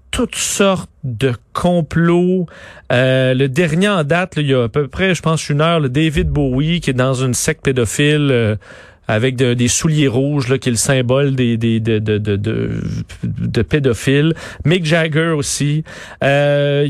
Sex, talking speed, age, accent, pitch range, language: male, 185 wpm, 40-59, Canadian, 135-180 Hz, French